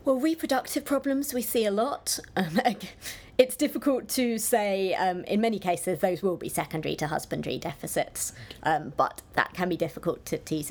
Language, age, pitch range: English, 30-49, 155-185 Hz